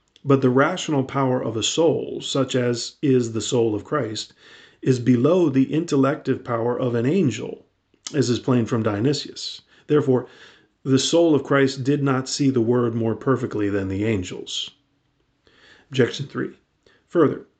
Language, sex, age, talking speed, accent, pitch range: English, male, 40-59, 155 wpm, American, 115-135 Hz